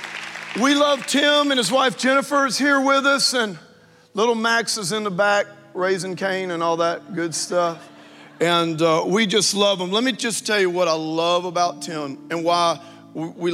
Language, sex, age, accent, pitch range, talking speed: English, male, 40-59, American, 160-205 Hz, 195 wpm